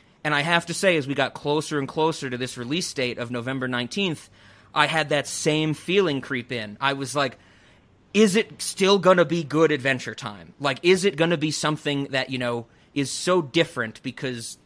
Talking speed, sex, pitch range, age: 210 wpm, male, 125-165 Hz, 30-49